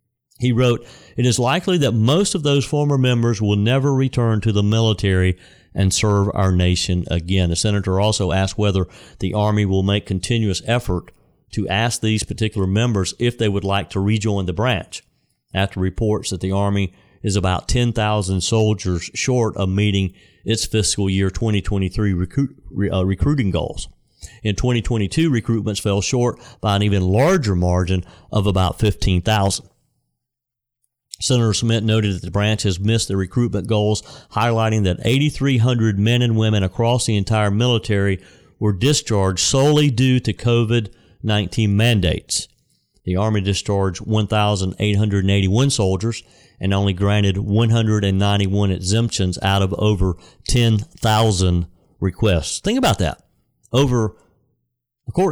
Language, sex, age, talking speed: English, male, 50-69, 135 wpm